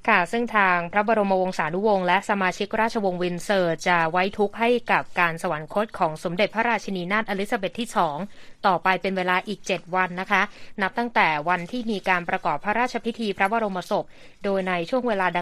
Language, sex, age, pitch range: Thai, female, 20-39, 180-215 Hz